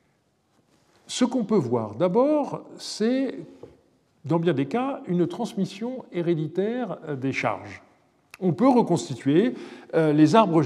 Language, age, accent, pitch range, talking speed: French, 50-69, French, 145-220 Hz, 115 wpm